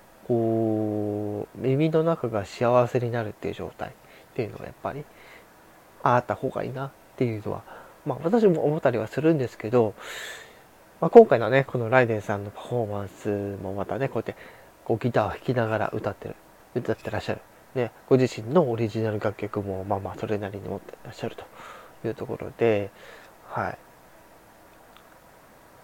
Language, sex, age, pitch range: Japanese, male, 20-39, 105-130 Hz